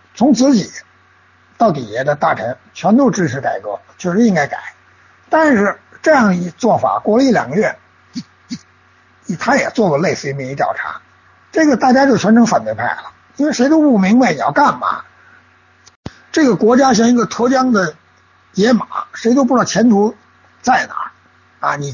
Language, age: Chinese, 60-79